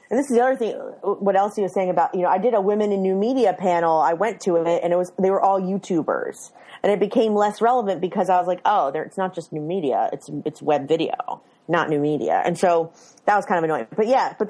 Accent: American